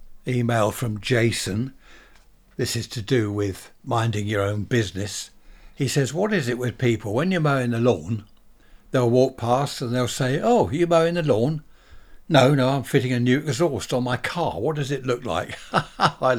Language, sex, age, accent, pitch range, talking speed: English, male, 60-79, British, 115-145 Hz, 185 wpm